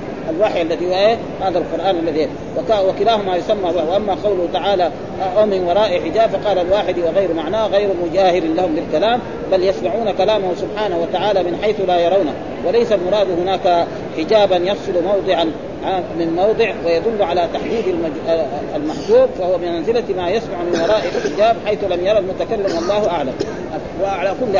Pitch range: 175-210 Hz